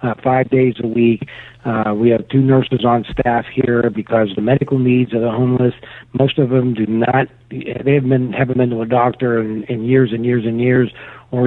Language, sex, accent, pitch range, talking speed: English, male, American, 120-140 Hz, 215 wpm